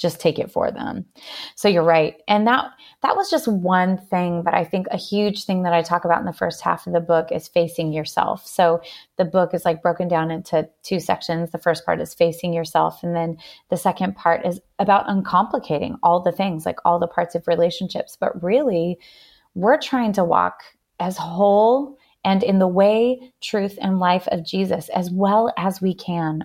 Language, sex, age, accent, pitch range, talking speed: English, female, 30-49, American, 175-215 Hz, 205 wpm